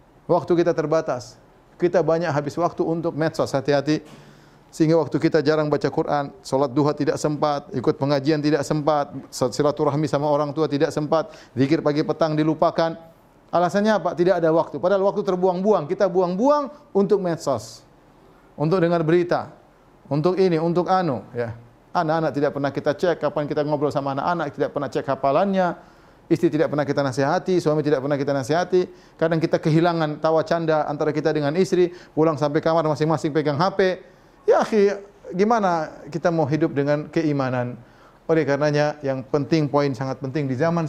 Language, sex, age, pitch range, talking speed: Indonesian, male, 30-49, 140-170 Hz, 160 wpm